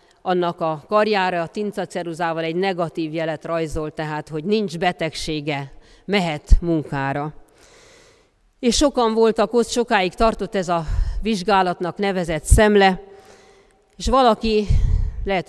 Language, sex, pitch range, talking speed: Hungarian, female, 160-200 Hz, 110 wpm